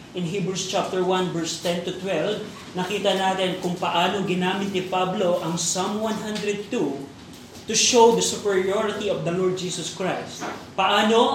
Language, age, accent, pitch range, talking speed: Filipino, 20-39, native, 185-215 Hz, 150 wpm